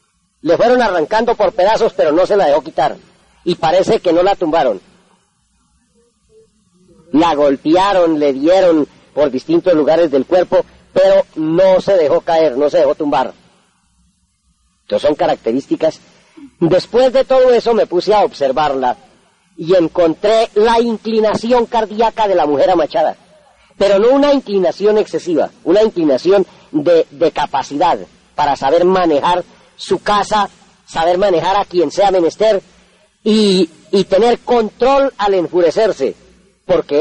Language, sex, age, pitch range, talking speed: Spanish, female, 40-59, 175-235 Hz, 135 wpm